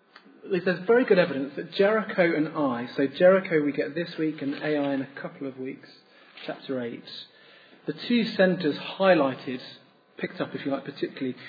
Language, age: English, 30-49